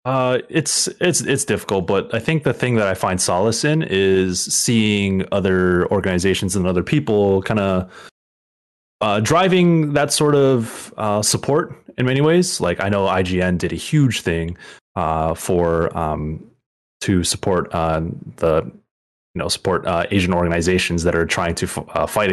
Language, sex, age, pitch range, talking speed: English, male, 20-39, 85-110 Hz, 165 wpm